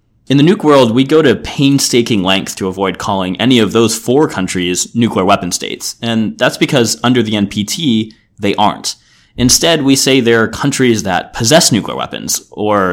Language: English